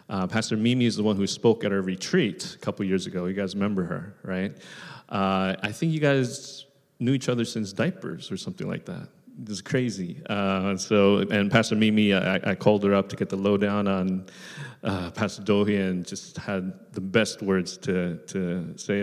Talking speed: 200 wpm